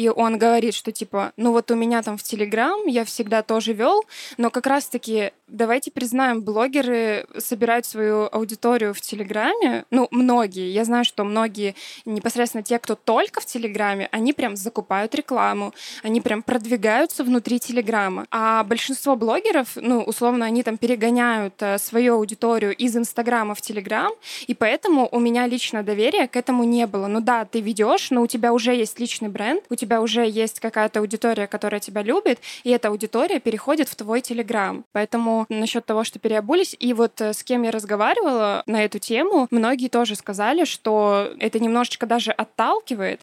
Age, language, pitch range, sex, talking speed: 20-39, Russian, 215-245 Hz, female, 170 wpm